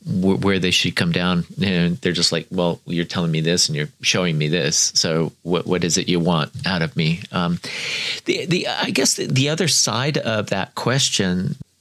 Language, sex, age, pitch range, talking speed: English, male, 40-59, 85-125 Hz, 210 wpm